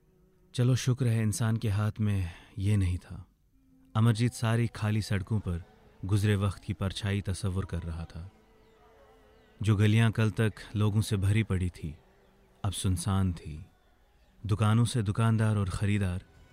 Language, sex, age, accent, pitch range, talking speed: Hindi, male, 30-49, native, 95-110 Hz, 145 wpm